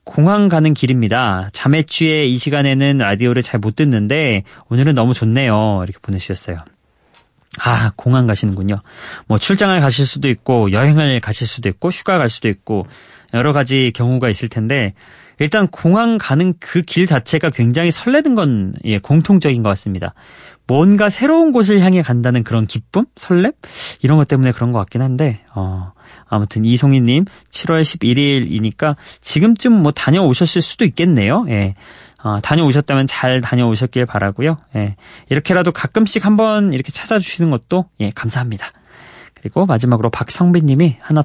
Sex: male